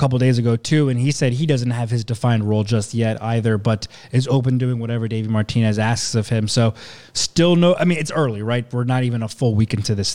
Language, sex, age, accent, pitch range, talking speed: English, male, 20-39, American, 115-145 Hz, 250 wpm